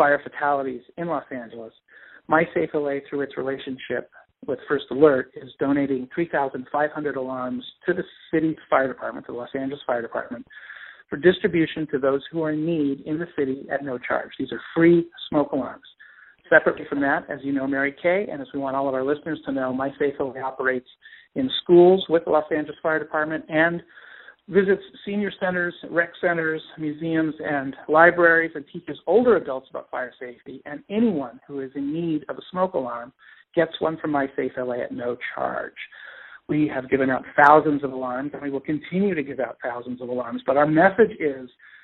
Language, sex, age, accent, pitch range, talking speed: English, male, 50-69, American, 135-170 Hz, 190 wpm